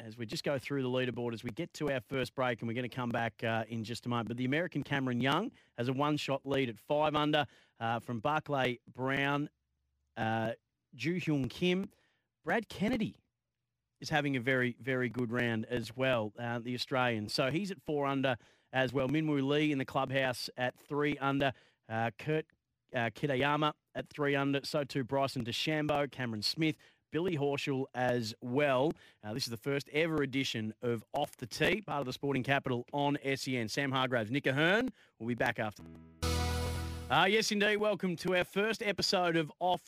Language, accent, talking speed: English, Australian, 190 wpm